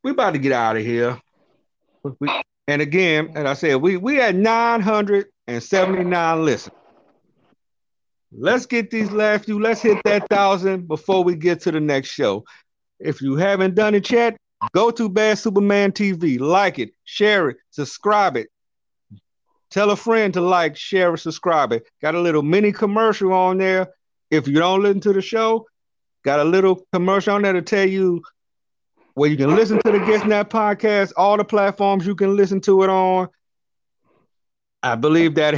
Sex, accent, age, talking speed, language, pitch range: male, American, 50-69, 175 wpm, English, 165-210 Hz